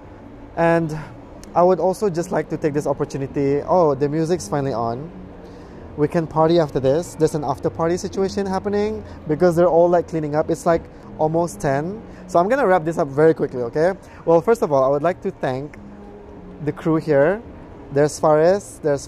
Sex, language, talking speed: male, English, 190 wpm